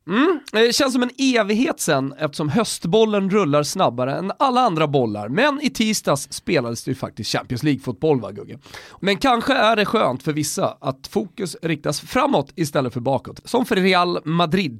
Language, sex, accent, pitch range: Swedish, male, native, 145-215 Hz